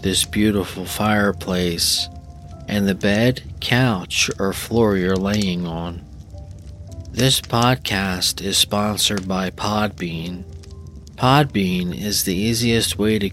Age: 40-59